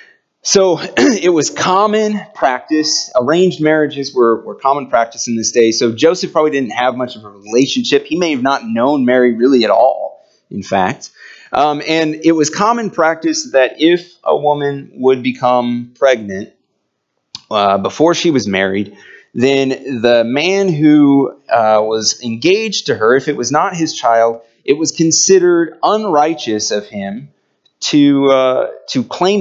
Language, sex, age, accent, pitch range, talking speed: English, male, 30-49, American, 105-155 Hz, 155 wpm